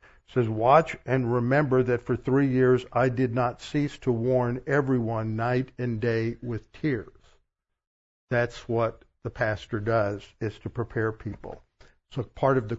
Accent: American